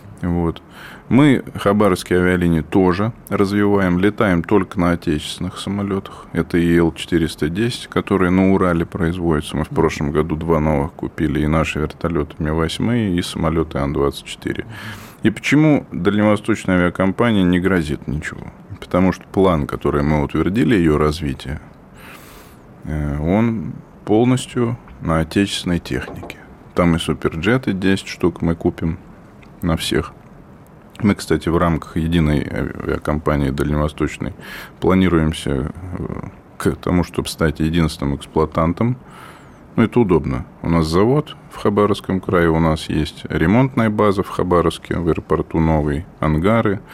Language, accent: Russian, native